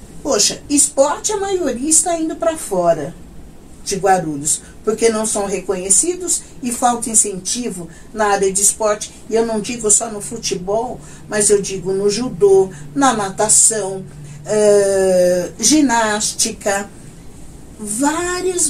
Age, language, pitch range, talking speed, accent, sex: 50-69, Portuguese, 190-250 Hz, 120 wpm, Brazilian, female